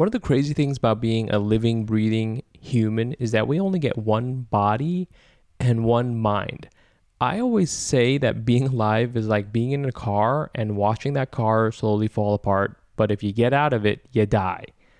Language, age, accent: English, 20-39, American